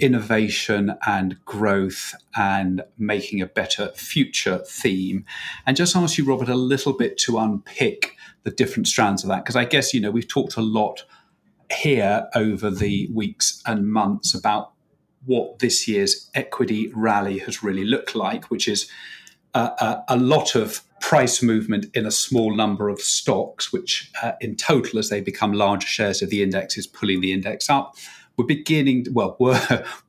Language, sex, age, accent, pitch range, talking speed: English, male, 40-59, British, 105-130 Hz, 170 wpm